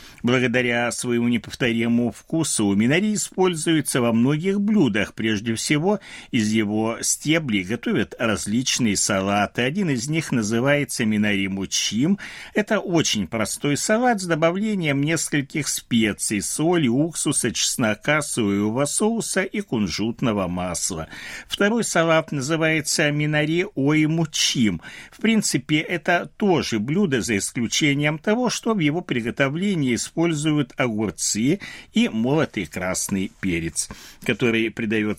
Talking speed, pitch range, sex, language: 115 wpm, 115-175 Hz, male, Russian